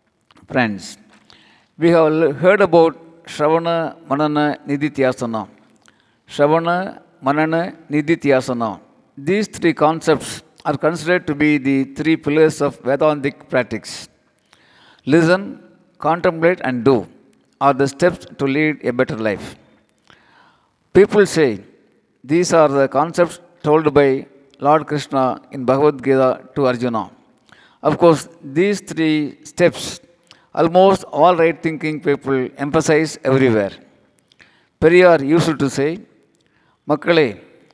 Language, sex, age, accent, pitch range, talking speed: Tamil, male, 50-69, native, 135-165 Hz, 110 wpm